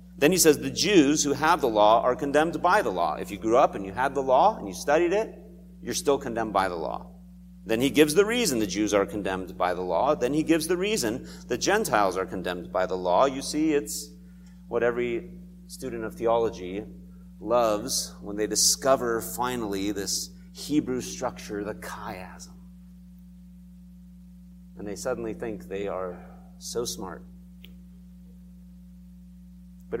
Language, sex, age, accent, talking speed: English, male, 40-59, American, 170 wpm